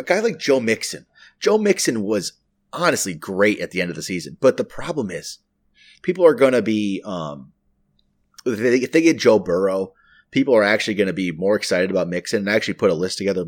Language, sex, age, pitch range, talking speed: English, male, 30-49, 95-120 Hz, 205 wpm